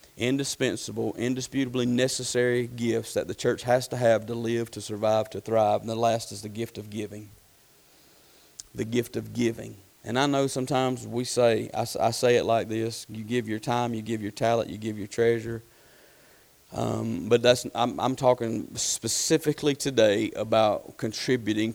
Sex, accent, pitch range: male, American, 115-125 Hz